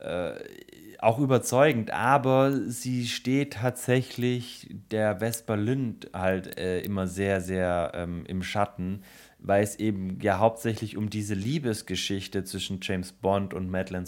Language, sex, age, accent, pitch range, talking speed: German, male, 30-49, German, 95-115 Hz, 130 wpm